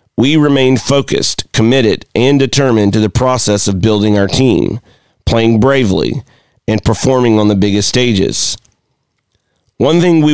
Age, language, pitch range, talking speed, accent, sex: 40-59, English, 105-125 Hz, 140 wpm, American, male